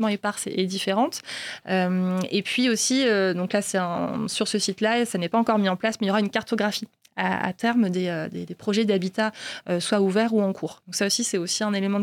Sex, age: female, 20-39